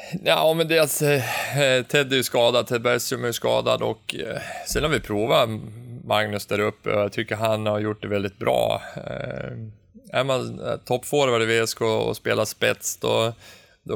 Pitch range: 110-125 Hz